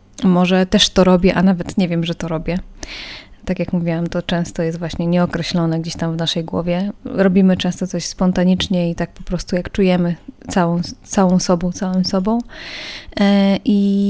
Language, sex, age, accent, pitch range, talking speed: Polish, female, 20-39, native, 175-205 Hz, 170 wpm